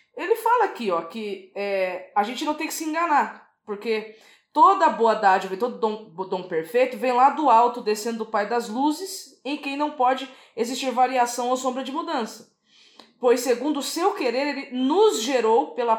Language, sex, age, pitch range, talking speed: Portuguese, female, 20-39, 215-270 Hz, 180 wpm